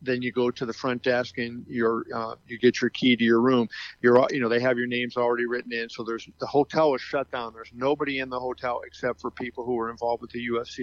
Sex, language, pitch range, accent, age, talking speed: male, English, 120-130 Hz, American, 50-69, 270 wpm